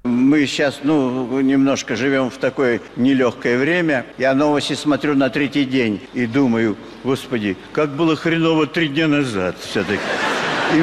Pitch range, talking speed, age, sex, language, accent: 155-230 Hz, 145 wpm, 50-69, male, Russian, native